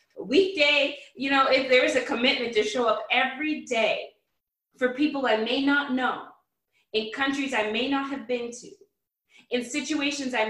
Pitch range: 215-280 Hz